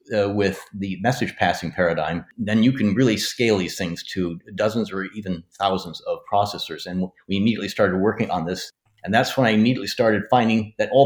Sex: male